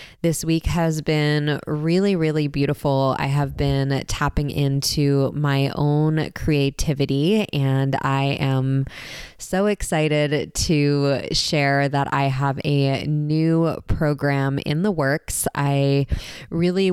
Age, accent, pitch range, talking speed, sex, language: 20-39, American, 140-155 Hz, 115 wpm, female, English